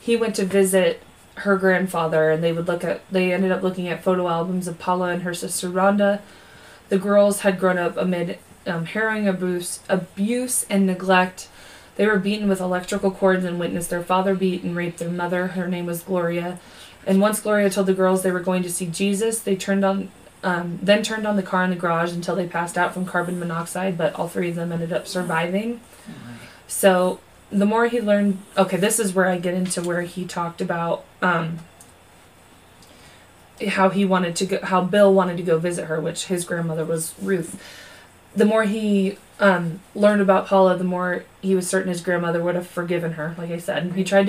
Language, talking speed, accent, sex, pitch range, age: English, 205 wpm, American, female, 175-195 Hz, 20-39